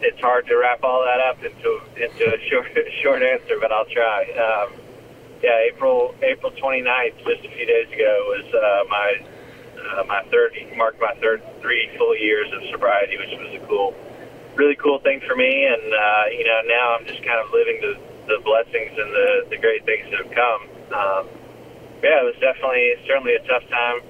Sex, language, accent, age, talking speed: male, English, American, 30-49, 195 wpm